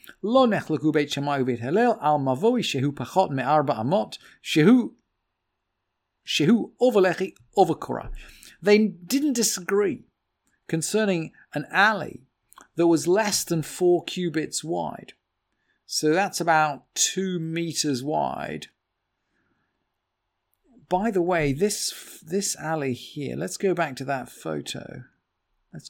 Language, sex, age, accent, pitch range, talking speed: English, male, 40-59, British, 130-185 Hz, 75 wpm